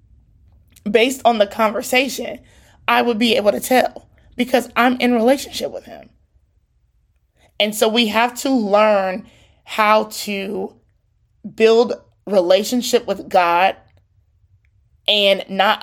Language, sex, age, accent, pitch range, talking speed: English, male, 20-39, American, 185-235 Hz, 115 wpm